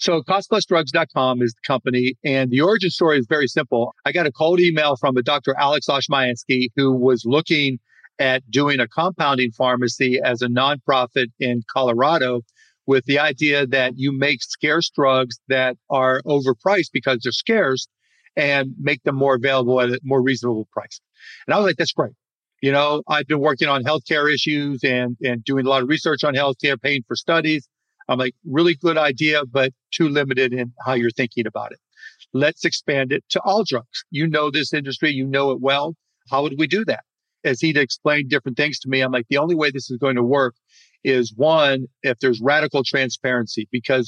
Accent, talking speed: American, 195 wpm